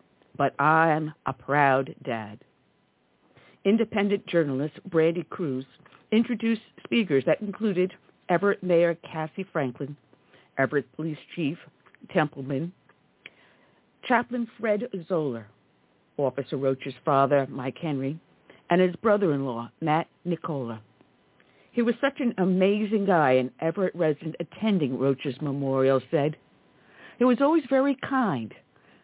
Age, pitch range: 50-69, 140-205 Hz